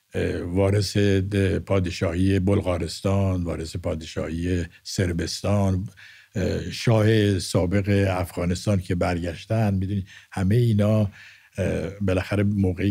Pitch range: 90-105 Hz